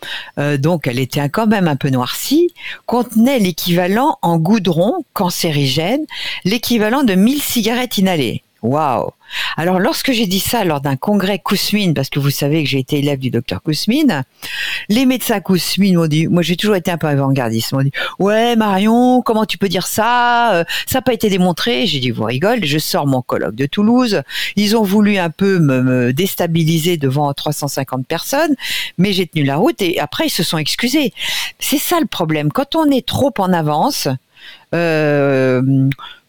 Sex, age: female, 50-69